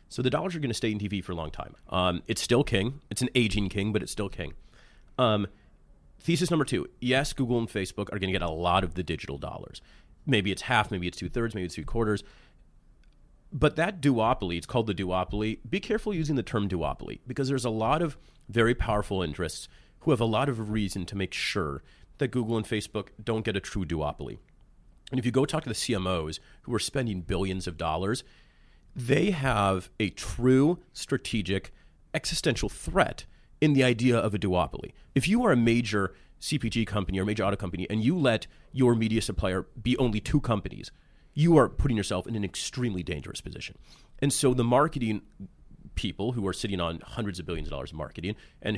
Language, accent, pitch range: English, American, 95-125 Hz